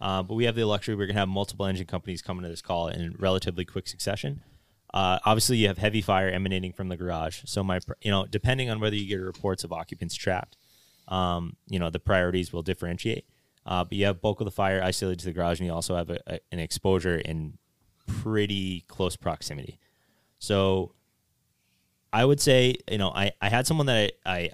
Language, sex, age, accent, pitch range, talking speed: English, male, 20-39, American, 85-105 Hz, 210 wpm